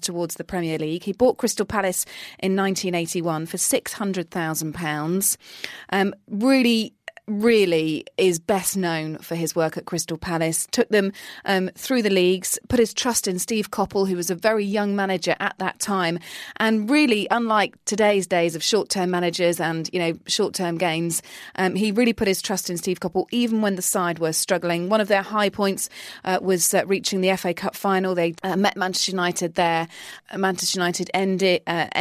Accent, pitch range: British, 165-200 Hz